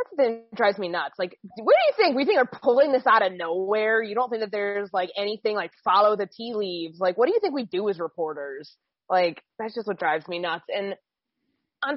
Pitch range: 170-225 Hz